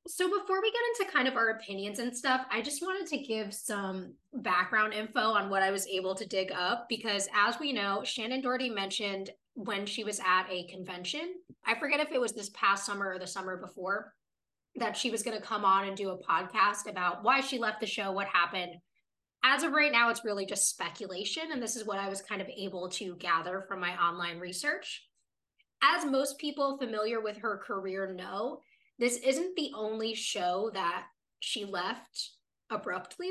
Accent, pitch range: American, 195-260 Hz